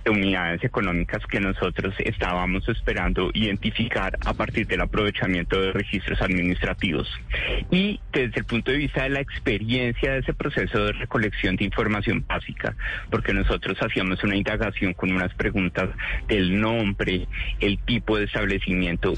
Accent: Colombian